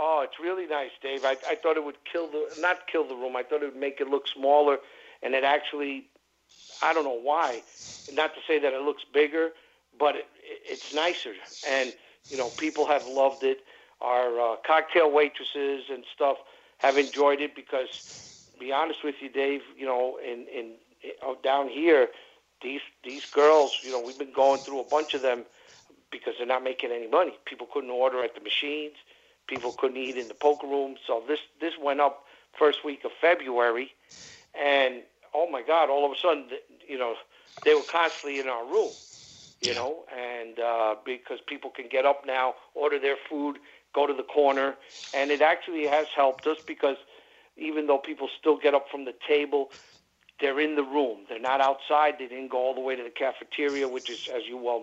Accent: American